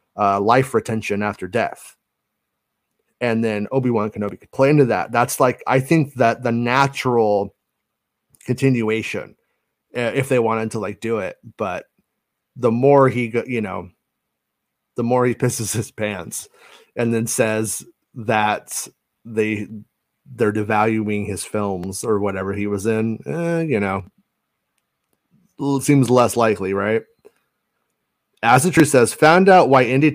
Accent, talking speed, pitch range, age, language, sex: American, 135 wpm, 105-135 Hz, 30-49, English, male